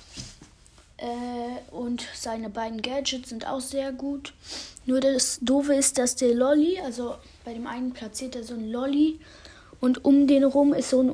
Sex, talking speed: female, 170 wpm